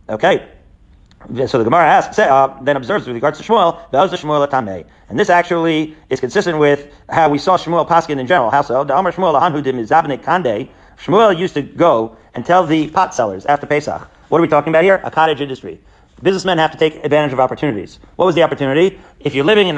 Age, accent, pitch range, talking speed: 40-59, American, 135-170 Hz, 180 wpm